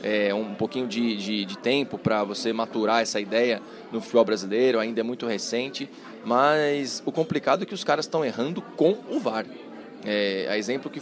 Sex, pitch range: male, 115-140 Hz